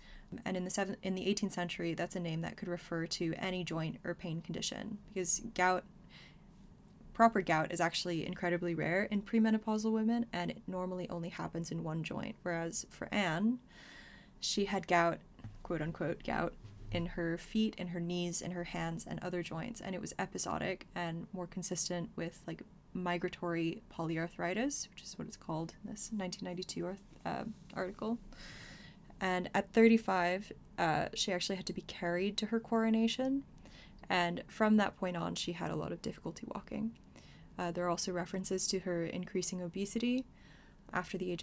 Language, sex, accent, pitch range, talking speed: English, female, American, 175-205 Hz, 170 wpm